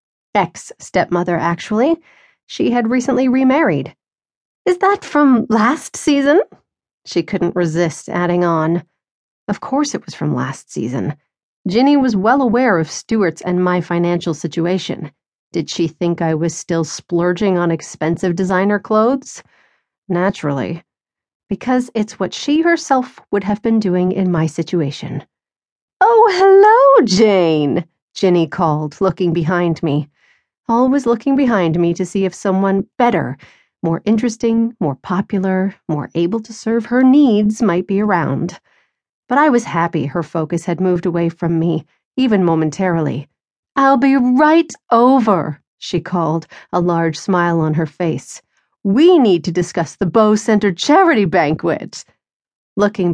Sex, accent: female, American